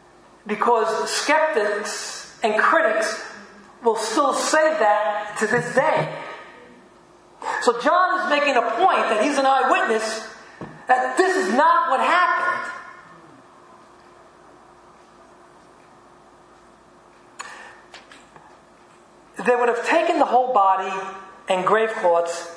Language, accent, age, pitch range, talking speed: English, American, 40-59, 205-265 Hz, 100 wpm